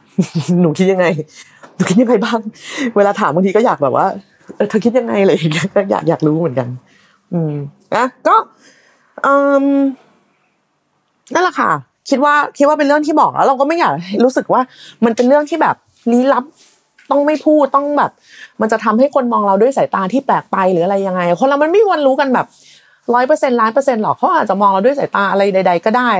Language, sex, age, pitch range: Thai, female, 30-49, 180-260 Hz